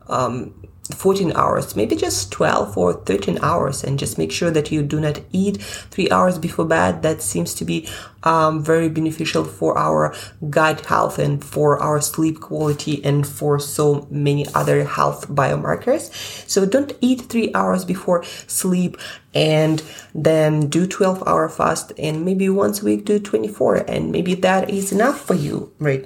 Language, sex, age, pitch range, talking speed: English, female, 20-39, 145-210 Hz, 170 wpm